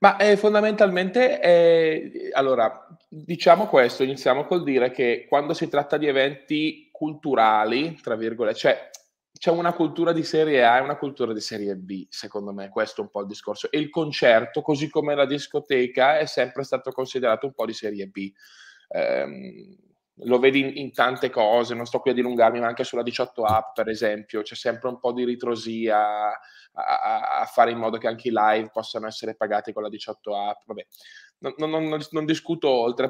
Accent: native